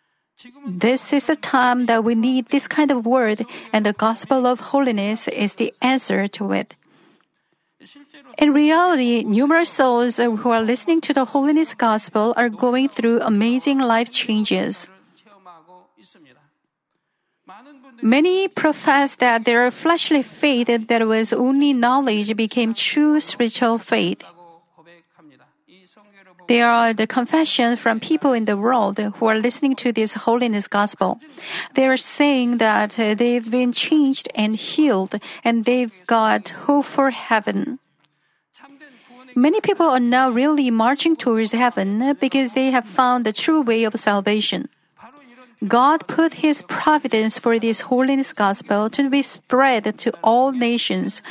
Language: Korean